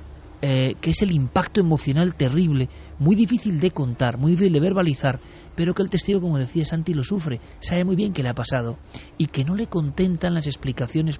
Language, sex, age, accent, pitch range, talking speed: Spanish, male, 40-59, Spanish, 125-160 Hz, 205 wpm